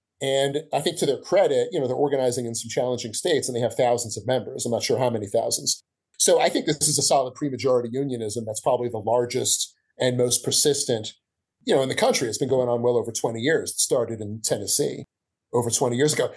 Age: 30-49